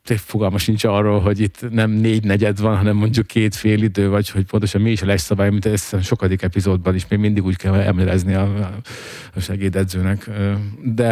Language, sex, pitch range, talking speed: Hungarian, male, 100-115 Hz, 195 wpm